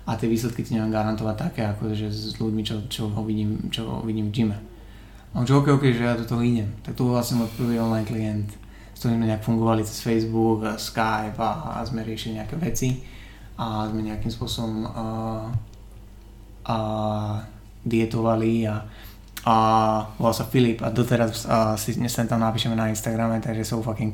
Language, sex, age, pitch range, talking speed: Czech, male, 20-39, 110-120 Hz, 170 wpm